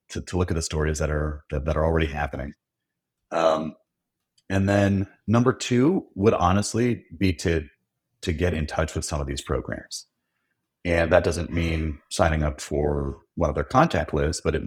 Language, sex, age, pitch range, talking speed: English, male, 40-59, 75-90 Hz, 185 wpm